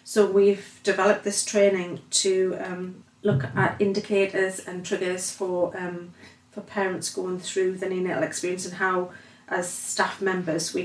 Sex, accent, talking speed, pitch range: female, British, 150 wpm, 180-200 Hz